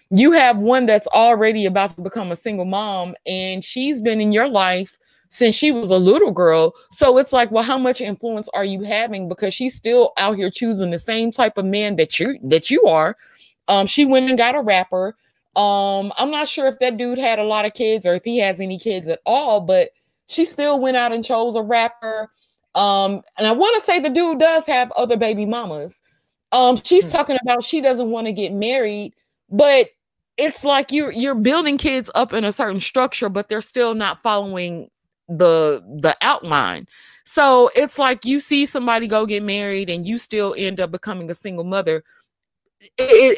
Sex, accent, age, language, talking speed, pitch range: female, American, 20-39, English, 205 wpm, 195-260 Hz